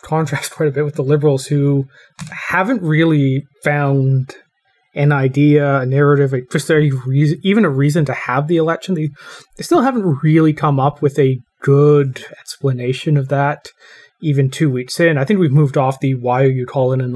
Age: 30-49